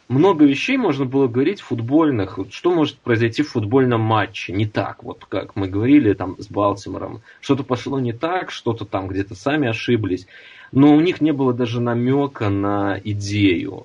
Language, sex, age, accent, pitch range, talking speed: Russian, male, 20-39, native, 100-140 Hz, 175 wpm